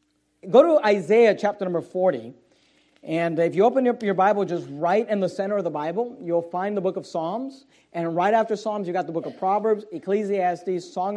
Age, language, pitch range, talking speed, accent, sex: 40-59, English, 185-225 Hz, 210 wpm, American, male